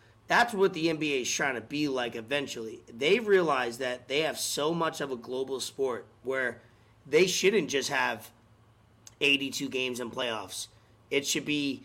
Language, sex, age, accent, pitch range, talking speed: English, male, 30-49, American, 120-165 Hz, 165 wpm